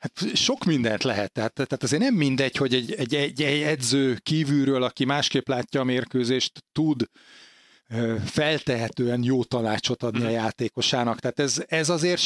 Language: Hungarian